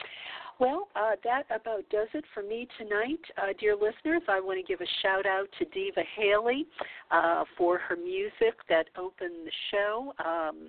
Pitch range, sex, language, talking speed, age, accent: 155-240 Hz, female, English, 175 wpm, 50-69, American